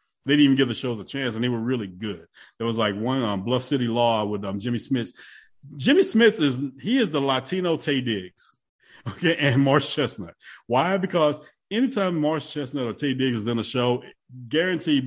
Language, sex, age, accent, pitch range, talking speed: English, male, 30-49, American, 115-150 Hz, 205 wpm